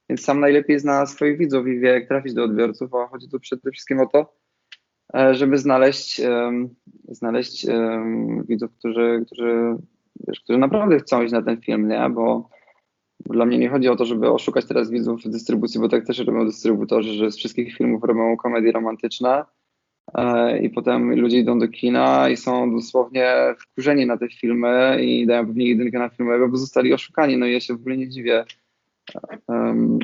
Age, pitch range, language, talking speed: 20-39, 115-130 Hz, Polish, 185 wpm